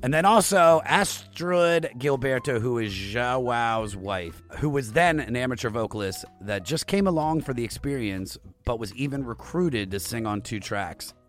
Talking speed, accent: 165 wpm, American